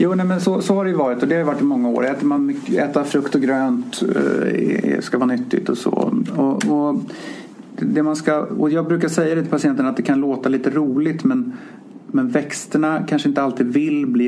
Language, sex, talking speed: English, male, 230 wpm